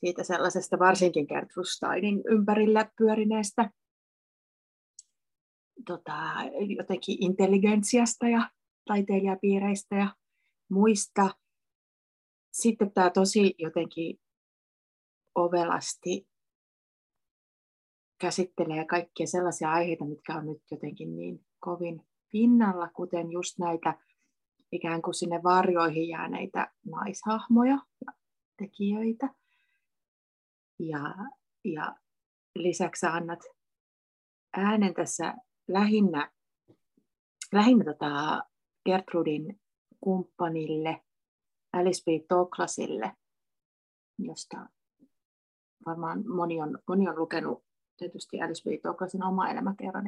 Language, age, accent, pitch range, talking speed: Finnish, 30-49, native, 170-220 Hz, 80 wpm